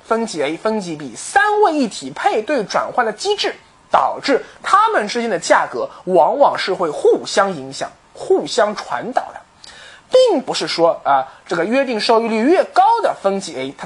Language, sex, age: Chinese, male, 20-39